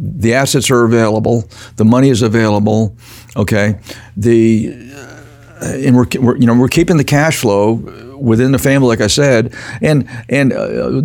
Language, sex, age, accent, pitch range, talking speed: English, male, 60-79, American, 110-125 Hz, 165 wpm